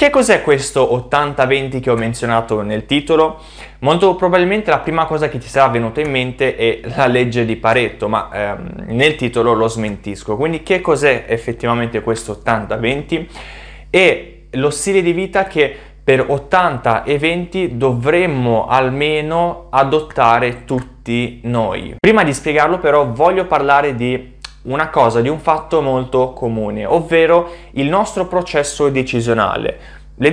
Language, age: Italian, 20-39